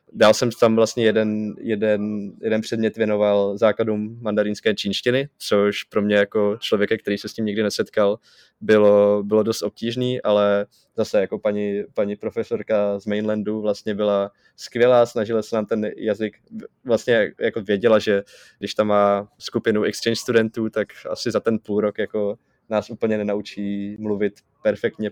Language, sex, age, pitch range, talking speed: Czech, male, 20-39, 100-110 Hz, 150 wpm